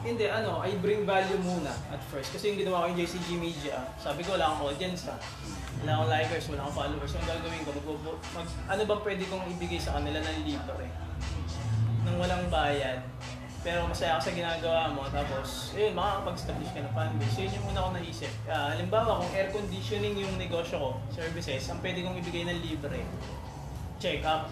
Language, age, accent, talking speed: Filipino, 20-39, native, 195 wpm